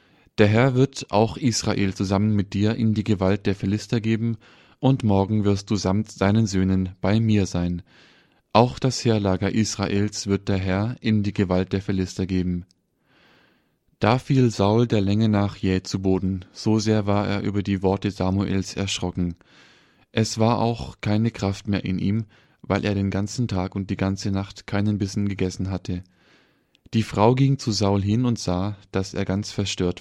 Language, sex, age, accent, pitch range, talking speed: German, male, 20-39, German, 95-110 Hz, 175 wpm